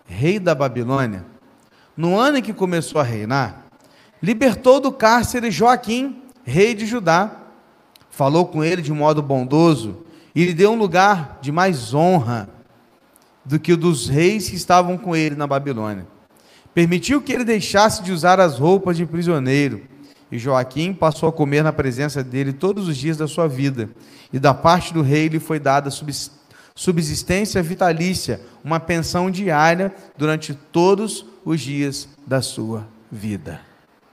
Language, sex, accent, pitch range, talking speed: Portuguese, male, Brazilian, 140-195 Hz, 155 wpm